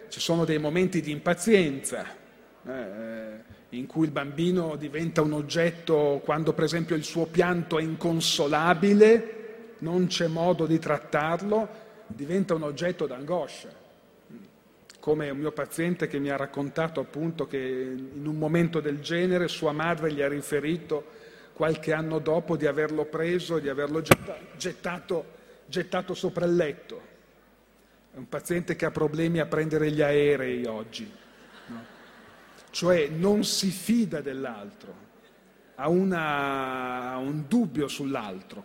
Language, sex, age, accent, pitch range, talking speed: Italian, male, 40-59, native, 145-180 Hz, 135 wpm